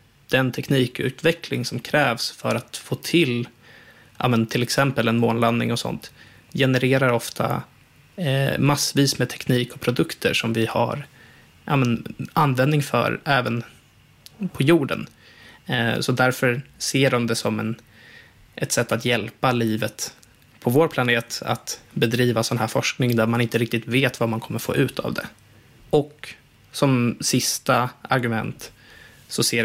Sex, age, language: male, 20-39, Swedish